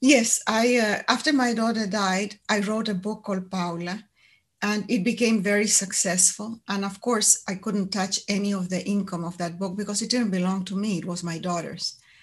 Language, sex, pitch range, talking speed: English, female, 185-230 Hz, 200 wpm